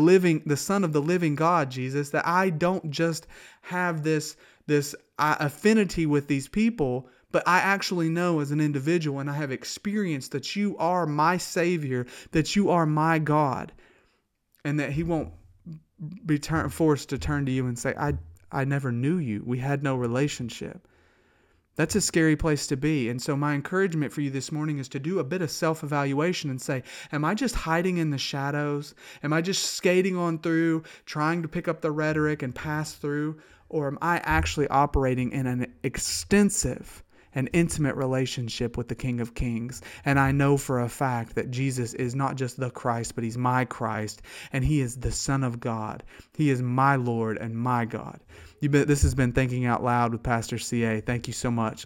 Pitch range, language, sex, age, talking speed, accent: 125-160 Hz, English, male, 30-49, 195 wpm, American